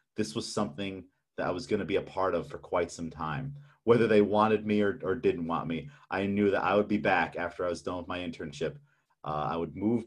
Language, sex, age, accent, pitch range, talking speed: English, male, 30-49, American, 95-130 Hz, 250 wpm